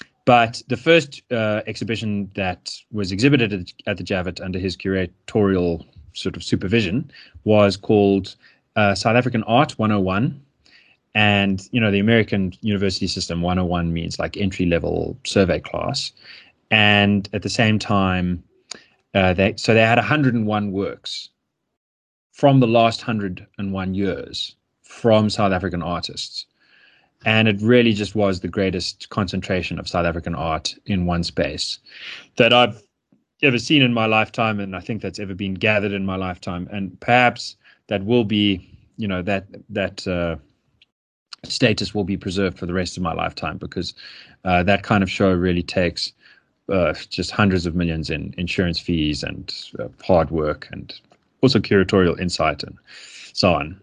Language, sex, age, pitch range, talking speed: English, male, 20-39, 90-110 Hz, 155 wpm